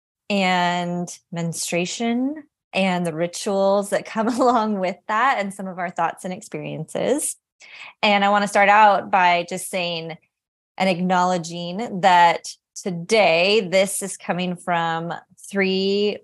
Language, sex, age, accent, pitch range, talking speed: English, female, 20-39, American, 165-200 Hz, 130 wpm